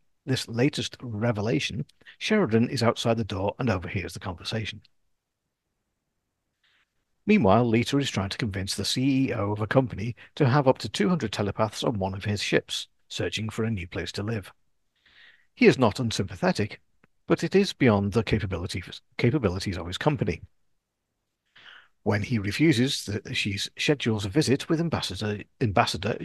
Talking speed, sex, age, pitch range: 145 wpm, male, 50-69, 100-130 Hz